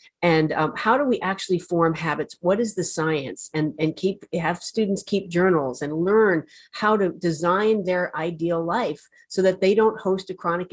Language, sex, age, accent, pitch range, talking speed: English, female, 50-69, American, 165-200 Hz, 190 wpm